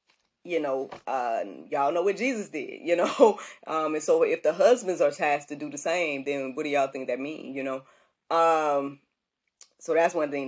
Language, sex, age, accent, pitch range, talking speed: English, female, 20-39, American, 140-170 Hz, 205 wpm